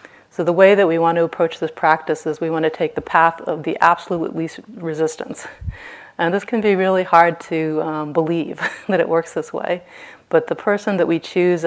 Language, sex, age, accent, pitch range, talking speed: English, female, 30-49, American, 155-180 Hz, 215 wpm